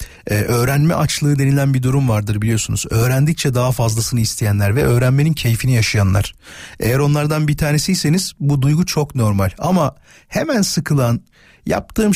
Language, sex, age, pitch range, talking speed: Turkish, male, 40-59, 130-190 Hz, 140 wpm